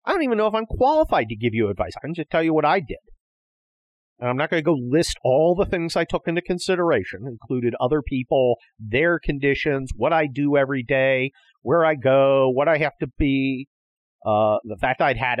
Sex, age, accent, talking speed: male, 50-69, American, 215 wpm